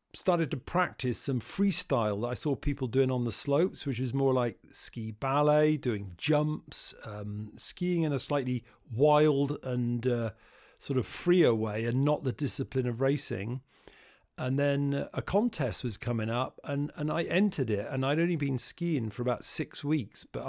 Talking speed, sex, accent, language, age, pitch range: 180 wpm, male, British, English, 50-69, 120-150 Hz